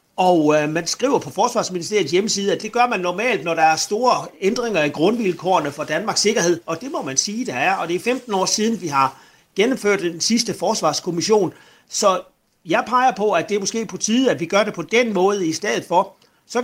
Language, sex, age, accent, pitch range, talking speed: Danish, male, 40-59, native, 165-225 Hz, 225 wpm